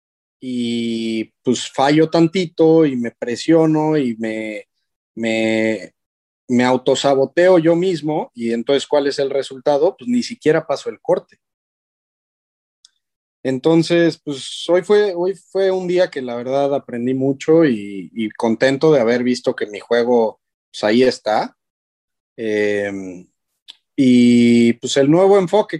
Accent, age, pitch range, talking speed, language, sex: Mexican, 30-49, 120-170 Hz, 135 wpm, Spanish, male